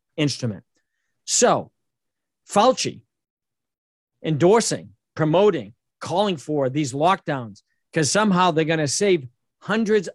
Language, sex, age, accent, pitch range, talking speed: English, male, 50-69, American, 140-170 Hz, 95 wpm